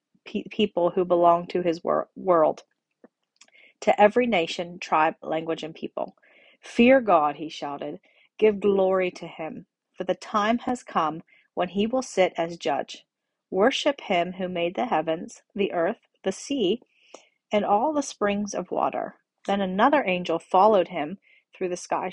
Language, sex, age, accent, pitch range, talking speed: English, female, 40-59, American, 170-220 Hz, 155 wpm